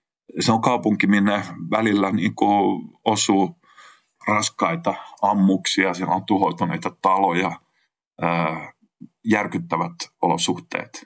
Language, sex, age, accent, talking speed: Finnish, male, 30-49, native, 85 wpm